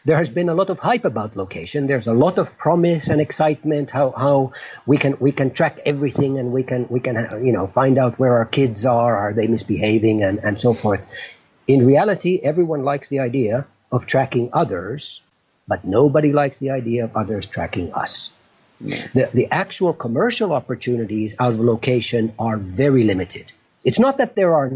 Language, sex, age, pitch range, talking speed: English, male, 50-69, 125-180 Hz, 190 wpm